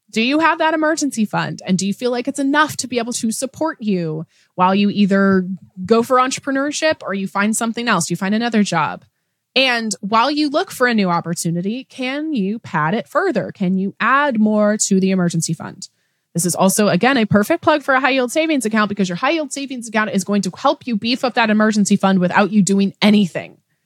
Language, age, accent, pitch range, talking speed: English, 20-39, American, 190-255 Hz, 215 wpm